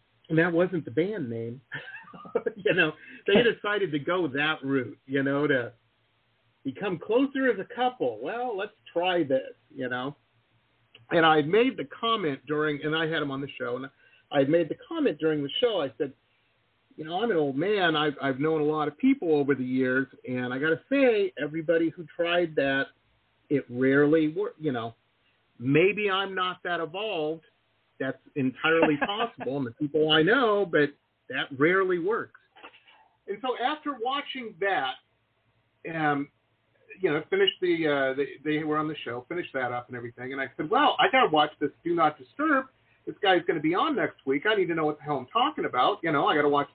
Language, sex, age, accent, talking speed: English, male, 40-59, American, 200 wpm